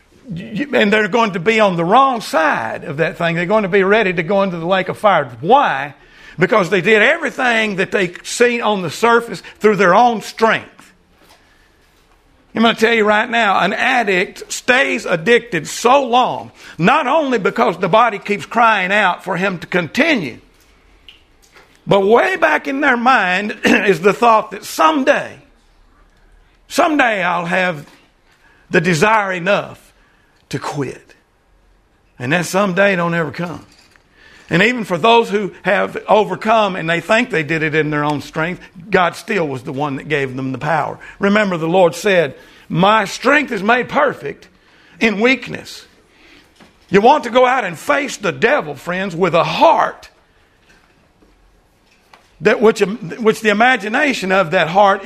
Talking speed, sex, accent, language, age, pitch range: 160 wpm, male, American, English, 50-69, 180-230 Hz